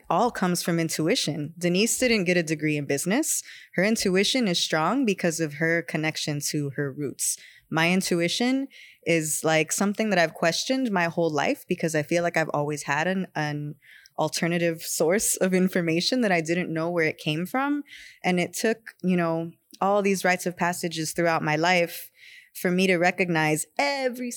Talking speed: 175 wpm